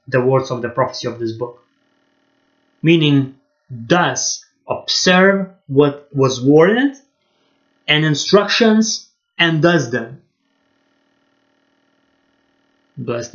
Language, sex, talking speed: English, male, 90 wpm